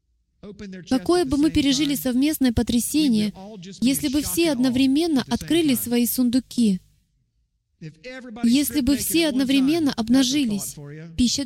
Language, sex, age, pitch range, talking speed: Russian, female, 20-39, 220-290 Hz, 100 wpm